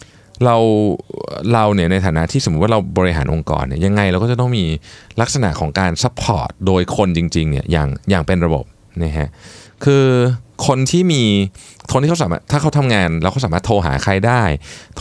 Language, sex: Thai, male